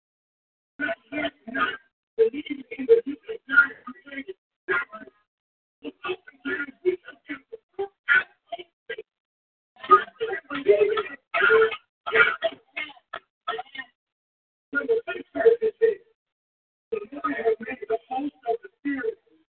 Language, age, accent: English, 40-59, American